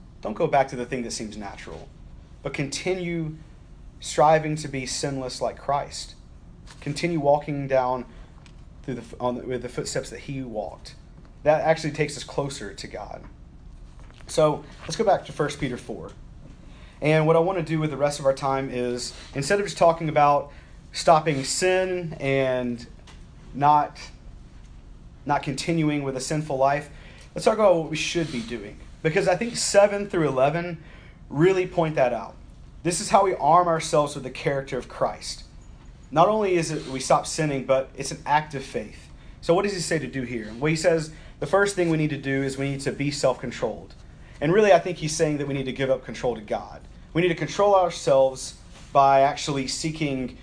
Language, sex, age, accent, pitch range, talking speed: English, male, 30-49, American, 125-155 Hz, 195 wpm